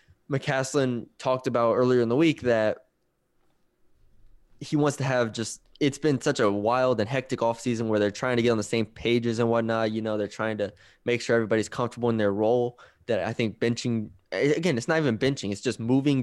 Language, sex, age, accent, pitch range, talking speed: English, male, 20-39, American, 110-145 Hz, 205 wpm